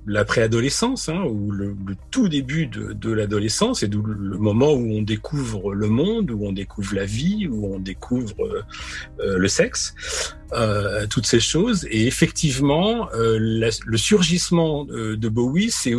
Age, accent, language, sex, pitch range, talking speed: 40-59, French, French, male, 110-155 Hz, 160 wpm